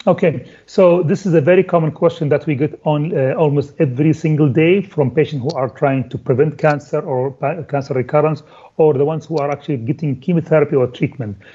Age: 40-59